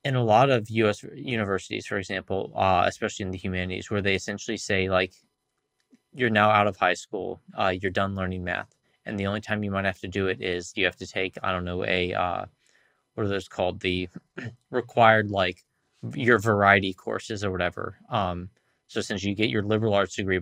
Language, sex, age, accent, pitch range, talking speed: English, male, 20-39, American, 95-110 Hz, 205 wpm